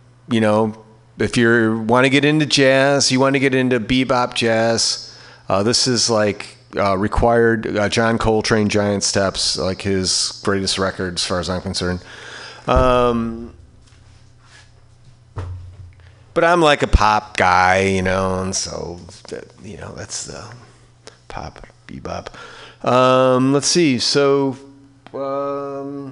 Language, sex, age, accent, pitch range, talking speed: English, male, 30-49, American, 110-135 Hz, 135 wpm